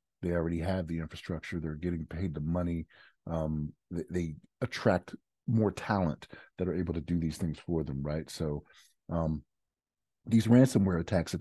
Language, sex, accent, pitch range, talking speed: English, male, American, 75-95 Hz, 170 wpm